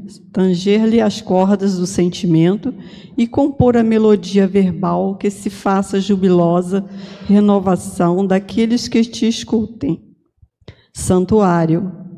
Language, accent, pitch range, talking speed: Portuguese, Brazilian, 190-230 Hz, 100 wpm